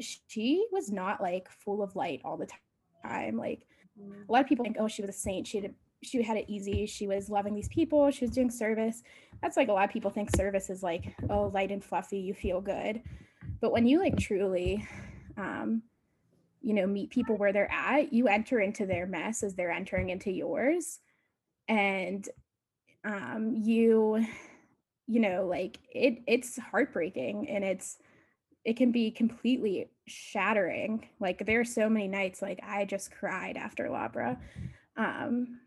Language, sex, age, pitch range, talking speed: English, female, 10-29, 195-240 Hz, 175 wpm